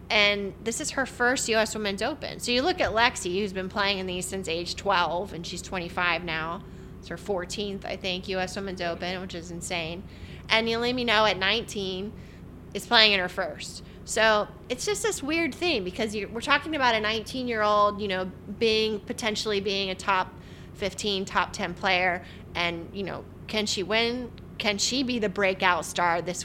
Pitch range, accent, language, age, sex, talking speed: 185-225 Hz, American, English, 20-39, female, 190 wpm